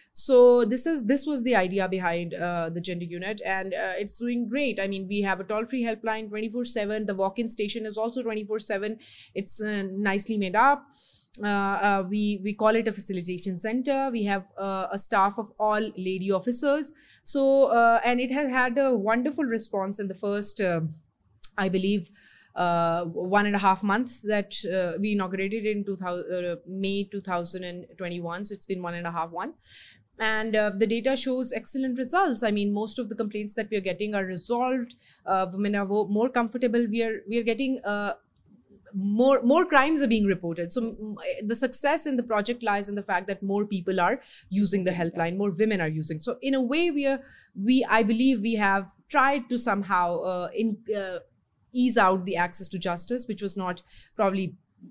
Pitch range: 190-240 Hz